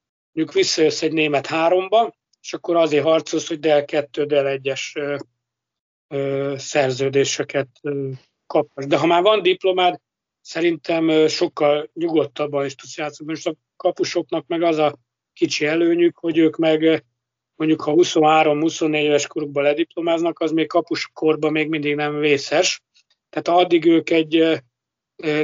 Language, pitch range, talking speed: Hungarian, 140-165 Hz, 130 wpm